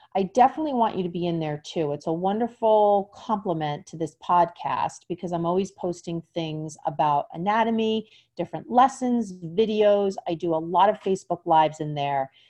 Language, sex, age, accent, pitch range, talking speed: English, female, 40-59, American, 160-210 Hz, 170 wpm